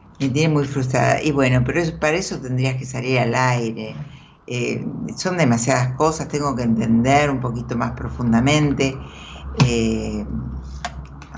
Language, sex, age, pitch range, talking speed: Spanish, female, 60-79, 120-150 Hz, 135 wpm